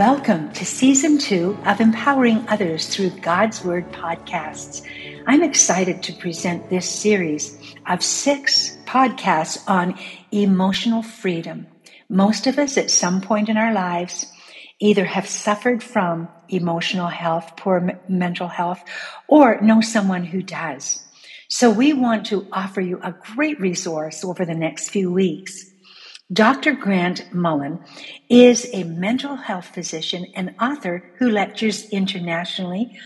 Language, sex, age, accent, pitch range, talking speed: English, female, 60-79, American, 180-235 Hz, 135 wpm